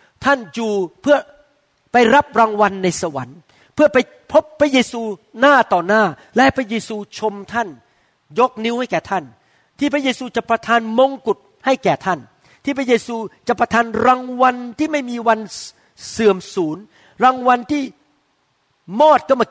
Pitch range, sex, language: 185-250 Hz, male, Thai